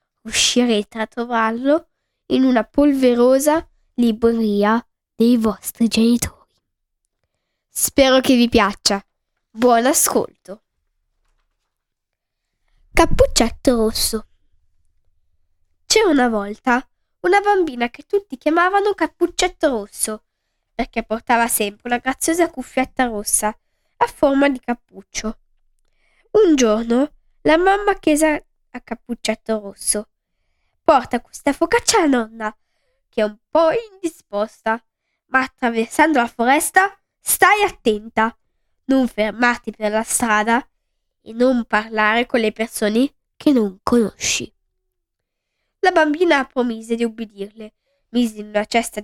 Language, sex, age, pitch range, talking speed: Italian, female, 10-29, 220-300 Hz, 105 wpm